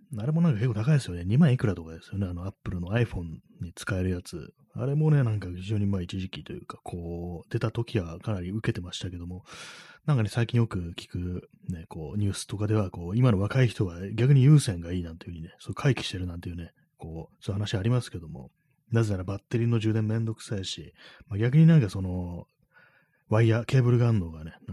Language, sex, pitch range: Japanese, male, 90-125 Hz